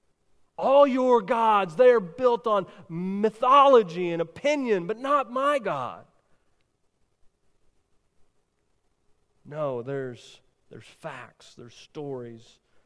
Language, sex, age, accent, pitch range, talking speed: English, male, 30-49, American, 130-190 Hz, 95 wpm